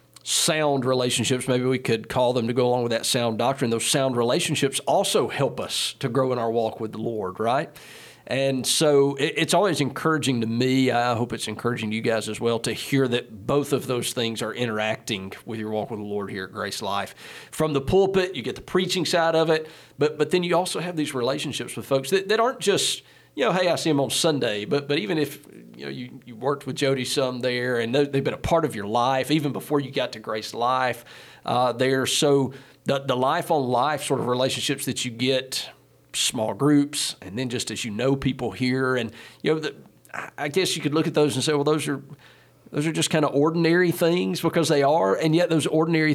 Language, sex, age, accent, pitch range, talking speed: English, male, 40-59, American, 120-150 Hz, 230 wpm